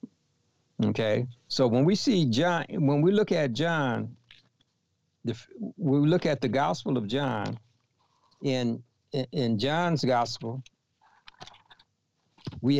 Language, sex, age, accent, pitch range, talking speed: English, male, 60-79, American, 115-140 Hz, 115 wpm